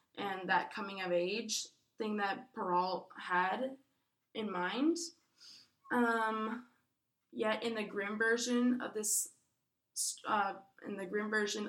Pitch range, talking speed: 195-240 Hz, 115 wpm